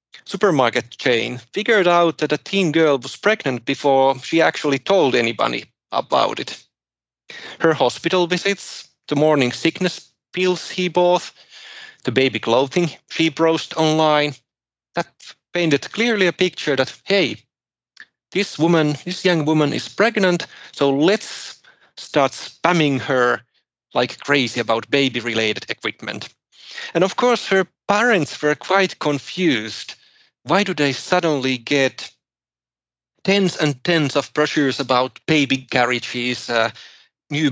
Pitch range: 130-170 Hz